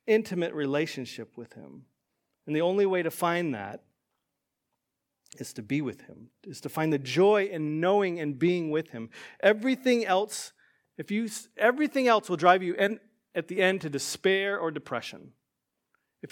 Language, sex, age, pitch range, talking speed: English, male, 40-59, 150-205 Hz, 165 wpm